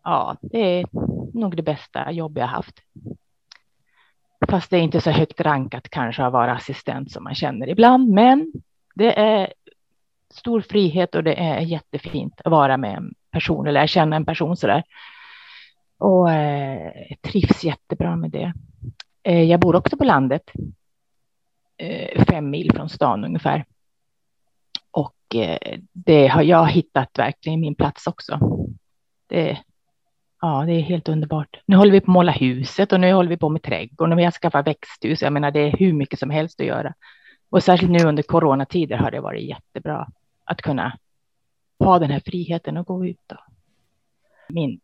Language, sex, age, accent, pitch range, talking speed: Swedish, female, 30-49, native, 140-180 Hz, 165 wpm